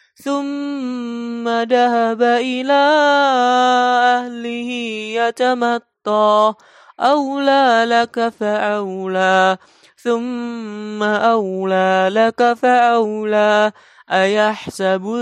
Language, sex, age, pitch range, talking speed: Indonesian, male, 20-39, 205-240 Hz, 50 wpm